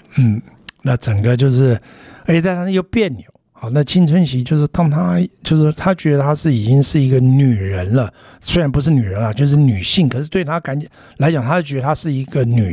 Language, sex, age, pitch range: Chinese, male, 60-79, 120-160 Hz